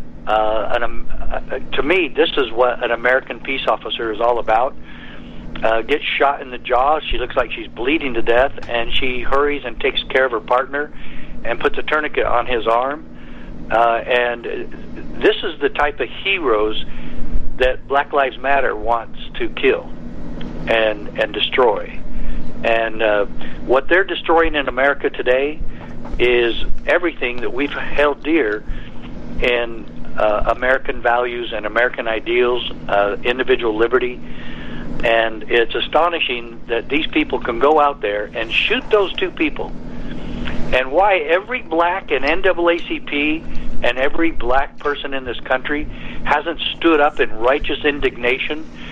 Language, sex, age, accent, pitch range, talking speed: English, male, 60-79, American, 115-150 Hz, 145 wpm